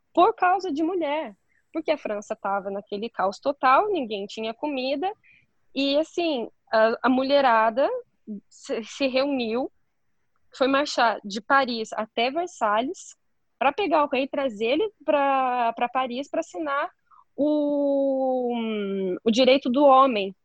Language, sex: Portuguese, female